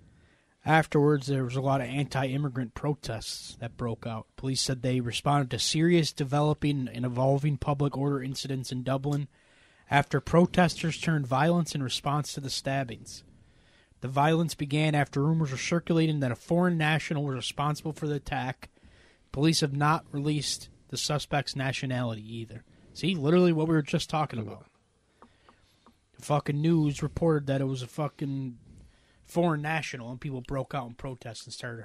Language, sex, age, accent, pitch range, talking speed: English, male, 20-39, American, 125-160 Hz, 160 wpm